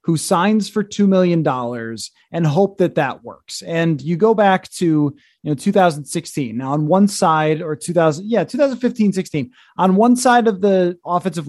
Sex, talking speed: male, 170 wpm